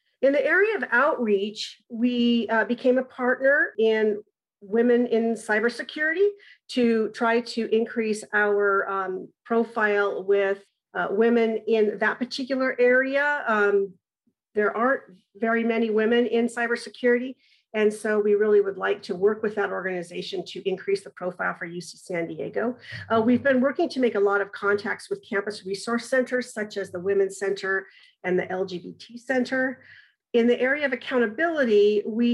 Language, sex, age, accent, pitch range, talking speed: English, female, 40-59, American, 200-245 Hz, 155 wpm